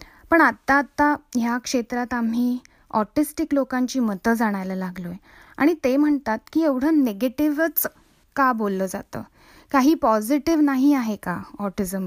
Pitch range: 220-280 Hz